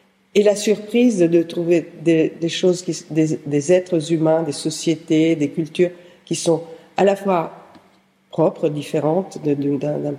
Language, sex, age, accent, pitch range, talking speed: English, female, 50-69, French, 155-190 Hz, 170 wpm